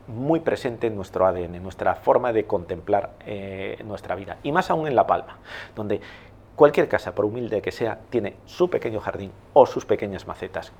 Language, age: Spanish, 40-59